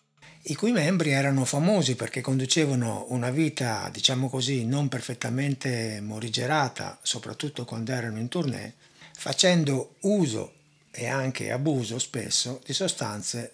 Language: Italian